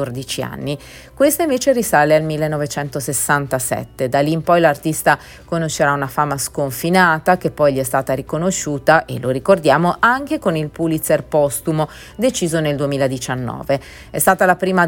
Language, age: Italian, 30-49